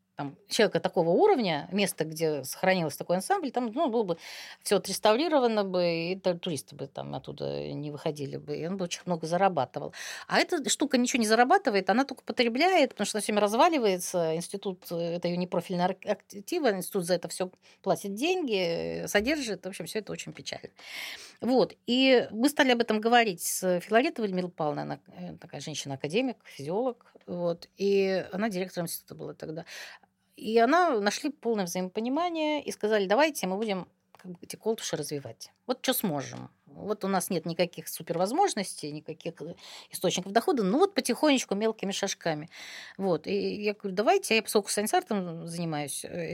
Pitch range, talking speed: 175-230 Hz, 160 wpm